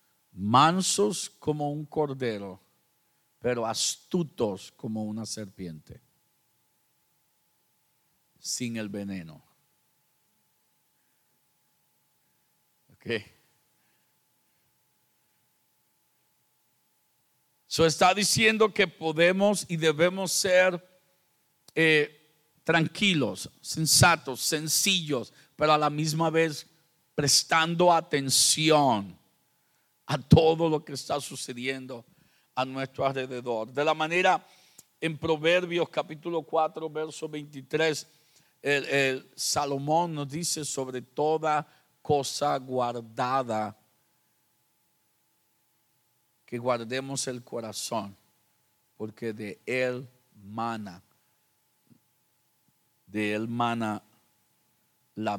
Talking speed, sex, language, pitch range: 75 wpm, male, Spanish, 125-160 Hz